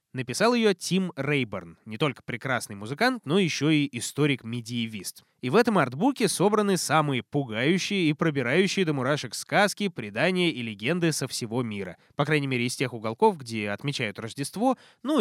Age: 20-39